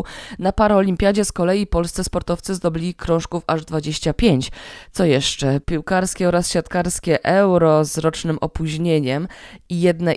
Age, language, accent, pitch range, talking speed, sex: 20-39, Polish, native, 160-195 Hz, 125 wpm, female